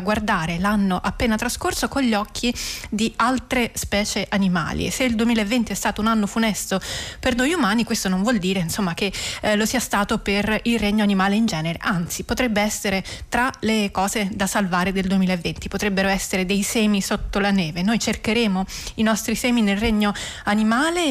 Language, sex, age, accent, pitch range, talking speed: Italian, female, 20-39, native, 195-230 Hz, 180 wpm